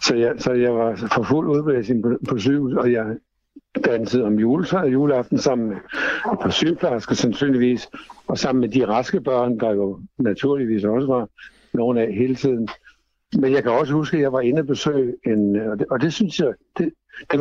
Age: 60-79